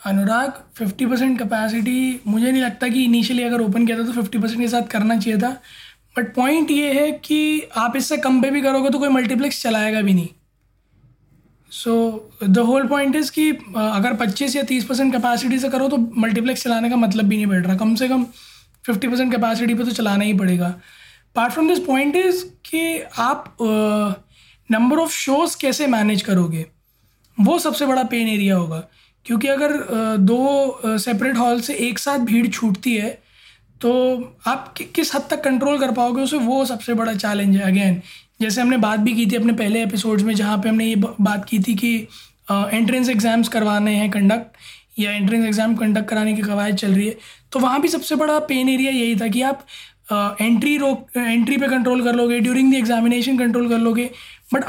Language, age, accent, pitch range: Hindi, 20-39, native, 215-260 Hz